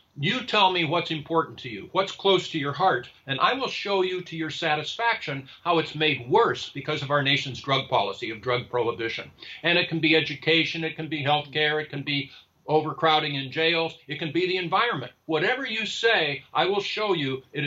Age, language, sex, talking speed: 50-69, English, male, 210 wpm